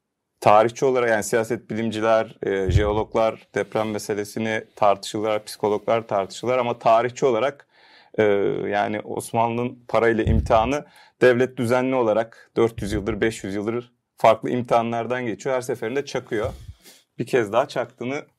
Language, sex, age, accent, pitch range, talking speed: Turkish, male, 40-59, native, 105-125 Hz, 120 wpm